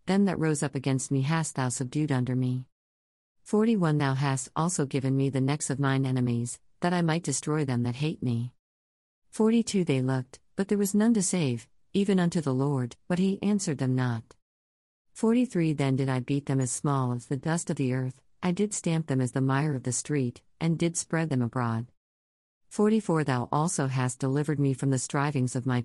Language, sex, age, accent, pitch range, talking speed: English, female, 50-69, American, 125-165 Hz, 205 wpm